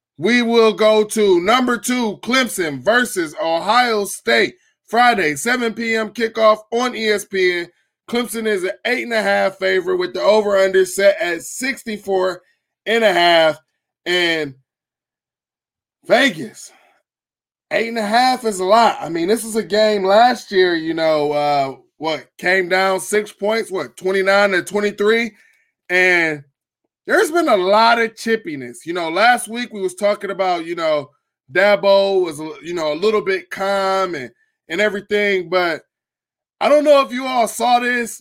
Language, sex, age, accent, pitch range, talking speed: English, male, 20-39, American, 180-230 Hz, 140 wpm